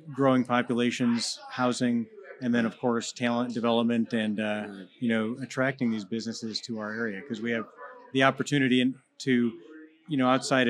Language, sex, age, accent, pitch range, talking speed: English, male, 30-49, American, 115-130 Hz, 155 wpm